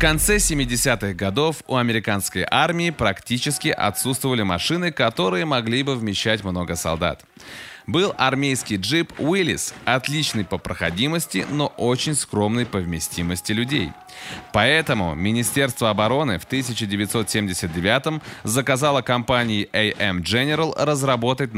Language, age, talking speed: Russian, 20-39, 110 wpm